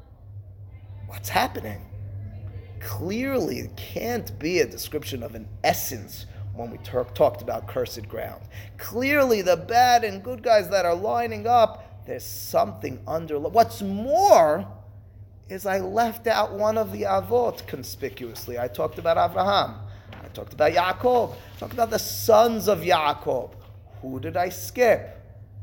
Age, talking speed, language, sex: 30-49, 140 wpm, English, male